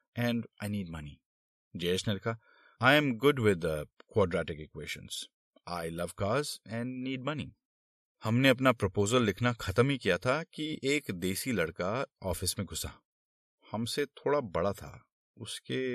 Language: Hindi